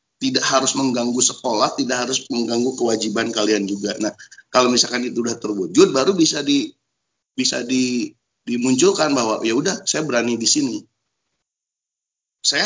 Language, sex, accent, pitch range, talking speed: Indonesian, male, native, 110-140 Hz, 140 wpm